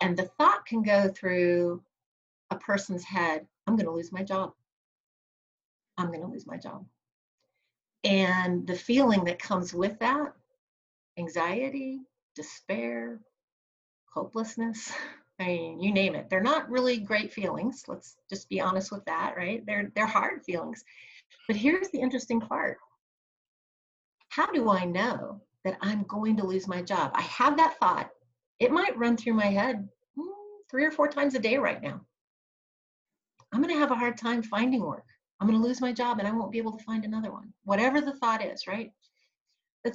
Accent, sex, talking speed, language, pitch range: American, female, 170 wpm, English, 185-250 Hz